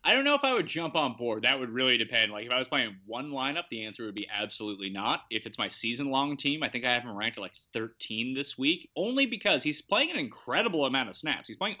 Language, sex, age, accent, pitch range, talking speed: English, male, 30-49, American, 125-190 Hz, 270 wpm